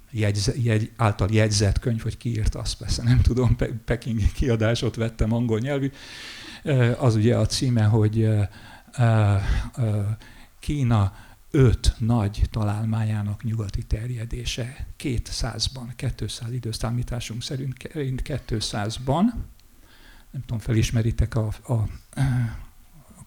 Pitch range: 110-125 Hz